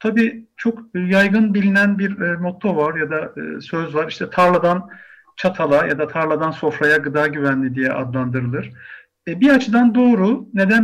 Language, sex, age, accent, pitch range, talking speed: Turkish, male, 50-69, native, 140-205 Hz, 145 wpm